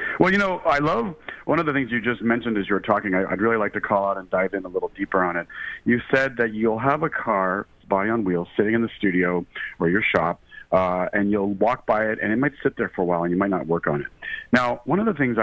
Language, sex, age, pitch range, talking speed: English, male, 40-59, 100-140 Hz, 285 wpm